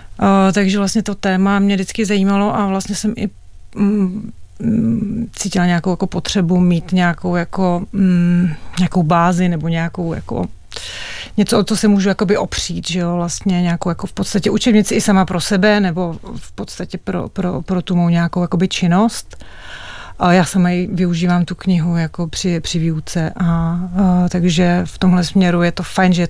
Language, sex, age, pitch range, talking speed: Czech, female, 40-59, 175-200 Hz, 170 wpm